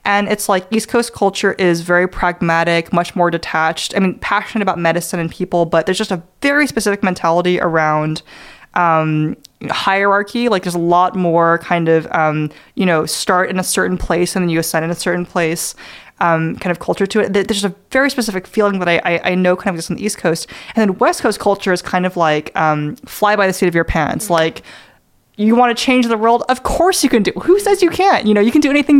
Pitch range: 170-210 Hz